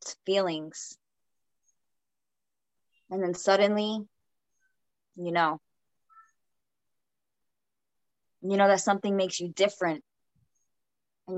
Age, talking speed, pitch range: 20-39, 75 wpm, 175-195 Hz